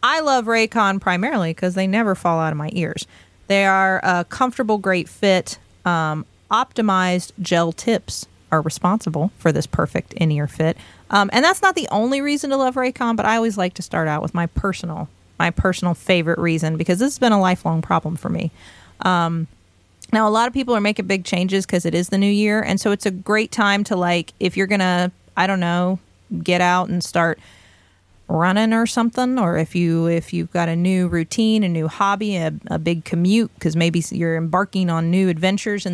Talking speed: 210 wpm